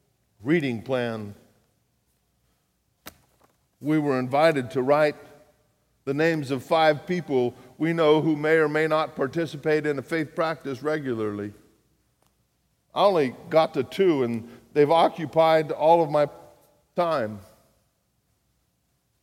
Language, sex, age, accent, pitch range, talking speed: English, male, 50-69, American, 150-190 Hz, 115 wpm